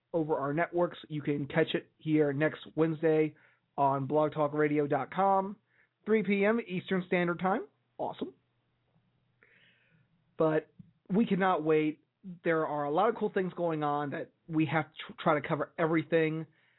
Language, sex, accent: English, male, American